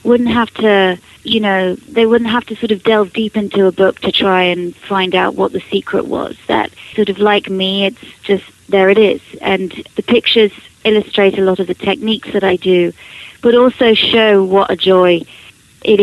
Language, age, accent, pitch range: English, 30-49, British, 185-220 Hz